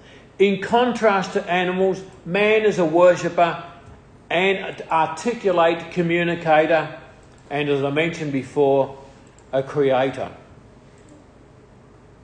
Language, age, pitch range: English, 50-69, 140-195 Hz